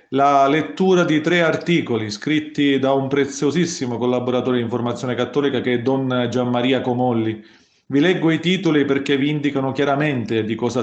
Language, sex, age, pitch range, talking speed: Italian, male, 40-59, 125-150 Hz, 155 wpm